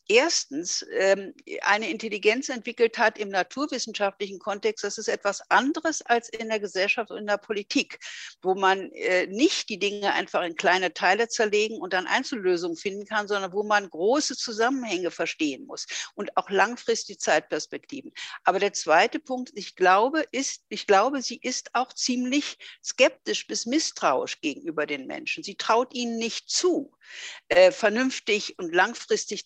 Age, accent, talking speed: 60-79, German, 145 wpm